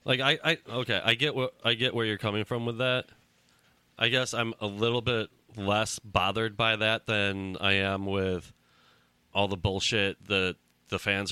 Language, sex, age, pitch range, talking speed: English, male, 30-49, 95-115 Hz, 185 wpm